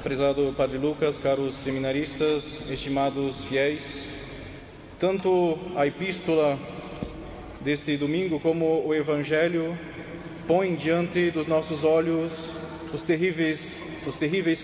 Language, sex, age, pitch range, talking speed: Portuguese, male, 20-39, 145-170 Hz, 100 wpm